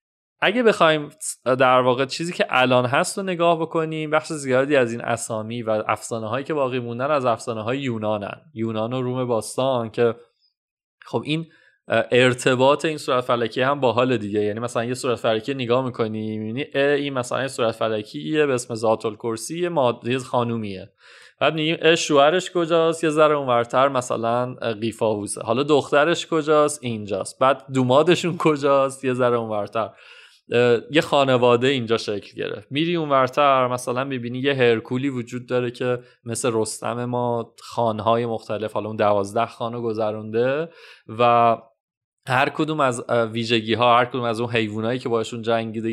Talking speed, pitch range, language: 150 wpm, 115-140 Hz, Persian